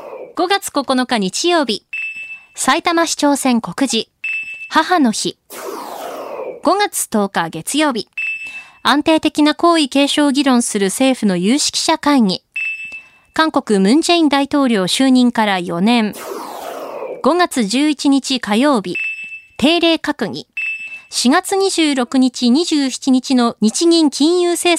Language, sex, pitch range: Japanese, female, 215-315 Hz